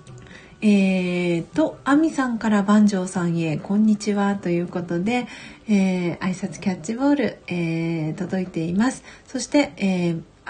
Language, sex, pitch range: Japanese, female, 190-245 Hz